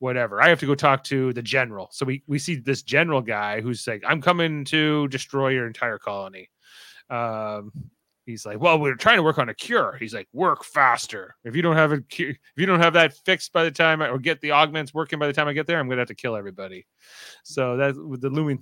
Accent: American